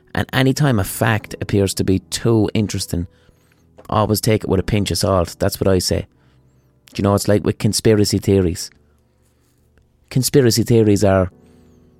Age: 30-49